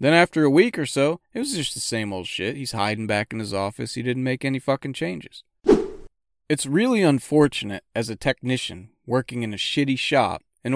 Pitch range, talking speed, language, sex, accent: 110-155 Hz, 205 wpm, English, male, American